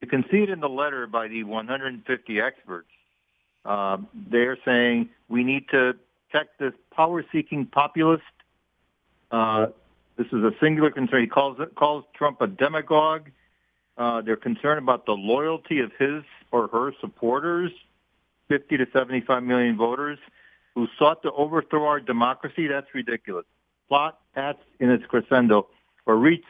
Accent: American